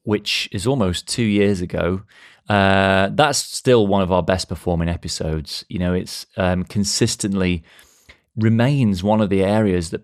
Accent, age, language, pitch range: British, 30-49, English, 90-110 Hz